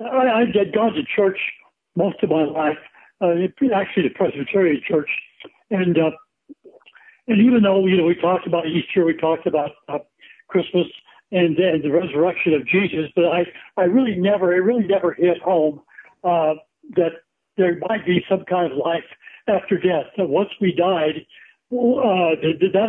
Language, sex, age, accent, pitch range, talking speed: English, male, 60-79, American, 170-210 Hz, 175 wpm